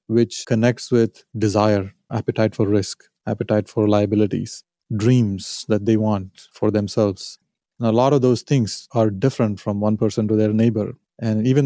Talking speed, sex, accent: 160 wpm, male, Indian